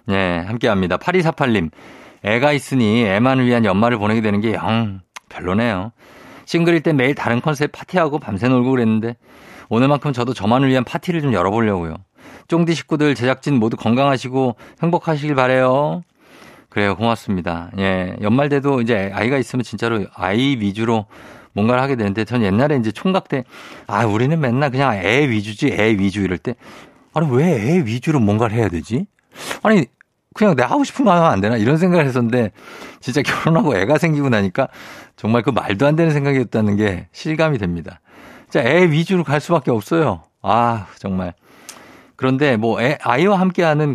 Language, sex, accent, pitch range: Korean, male, native, 105-145 Hz